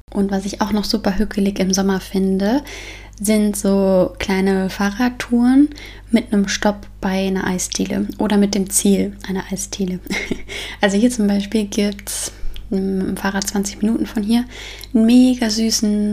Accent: German